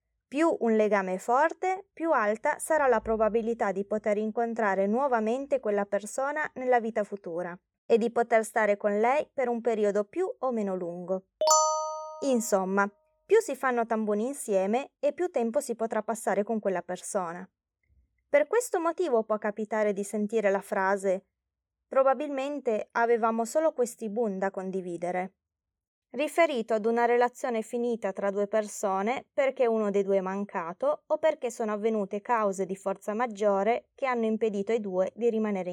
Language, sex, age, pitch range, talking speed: Italian, female, 20-39, 200-260 Hz, 155 wpm